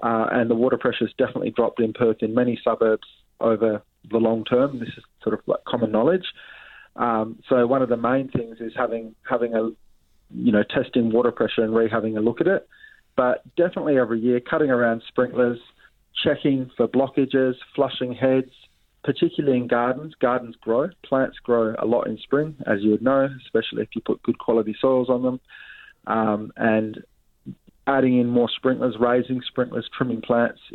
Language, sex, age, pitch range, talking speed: English, male, 20-39, 115-130 Hz, 185 wpm